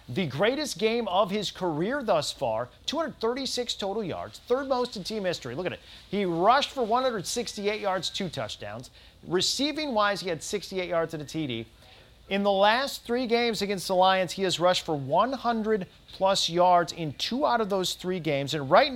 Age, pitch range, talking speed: 40-59, 150-195 Hz, 185 wpm